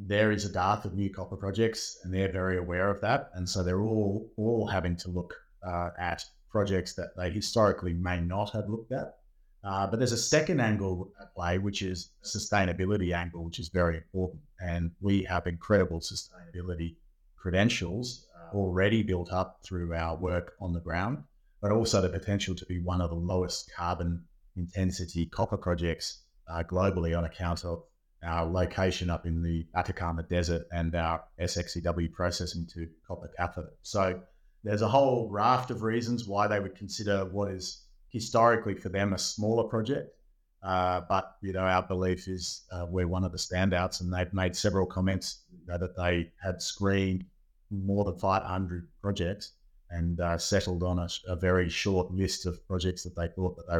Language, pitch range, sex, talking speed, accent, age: English, 85-100 Hz, male, 175 wpm, Australian, 30-49